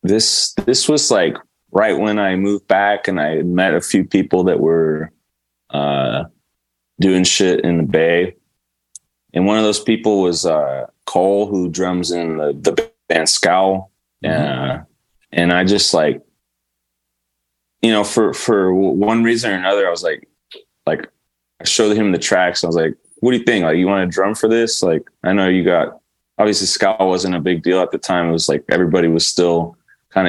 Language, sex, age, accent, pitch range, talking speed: English, male, 20-39, American, 80-100 Hz, 190 wpm